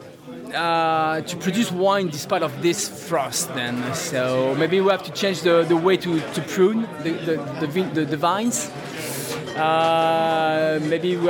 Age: 20-39